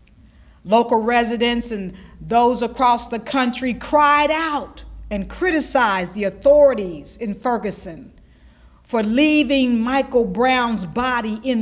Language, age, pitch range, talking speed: English, 50-69, 195-250 Hz, 110 wpm